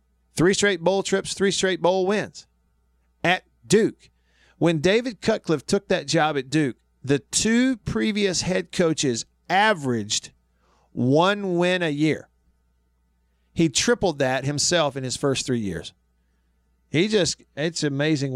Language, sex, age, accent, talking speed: English, male, 40-59, American, 135 wpm